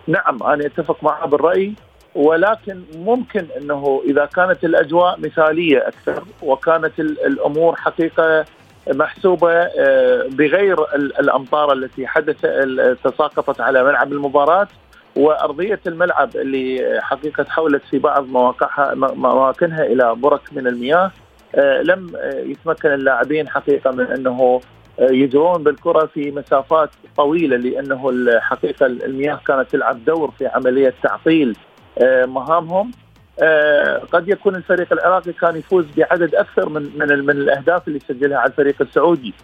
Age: 40-59